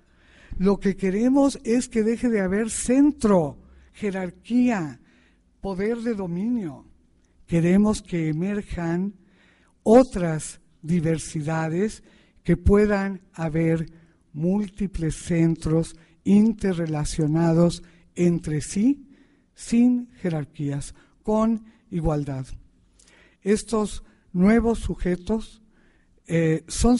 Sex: male